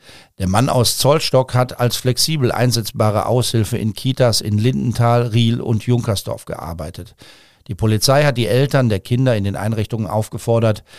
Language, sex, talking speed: German, male, 155 wpm